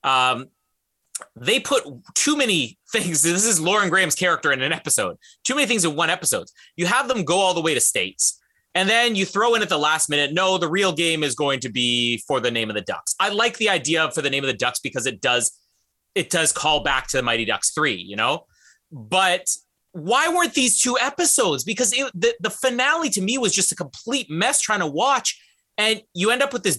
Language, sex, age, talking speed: English, male, 30-49, 230 wpm